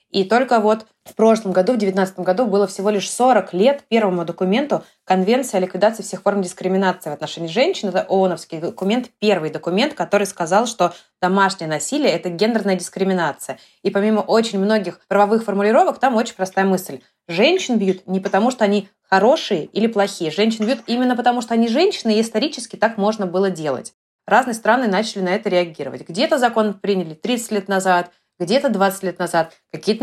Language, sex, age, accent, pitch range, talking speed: Russian, female, 20-39, native, 185-225 Hz, 175 wpm